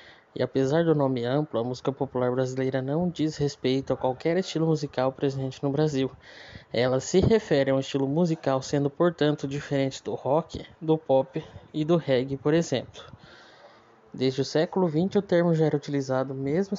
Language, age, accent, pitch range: Portuguese, 20-39, Brazilian, 130-155 Hz